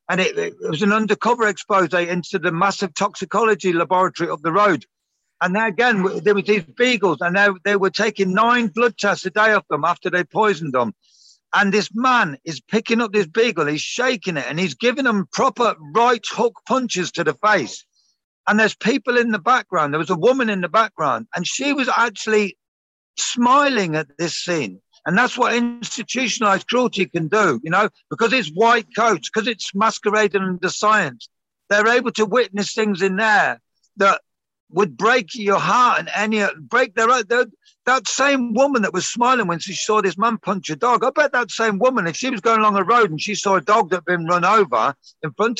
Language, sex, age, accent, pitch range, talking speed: English, male, 50-69, British, 185-240 Hz, 205 wpm